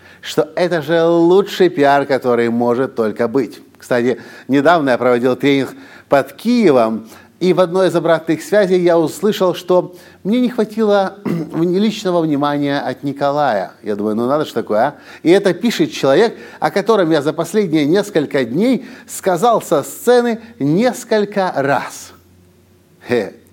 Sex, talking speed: male, 145 wpm